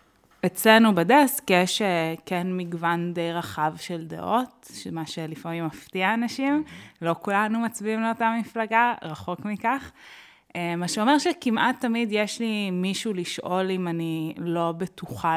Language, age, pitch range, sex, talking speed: Hebrew, 20-39, 170-220 Hz, female, 125 wpm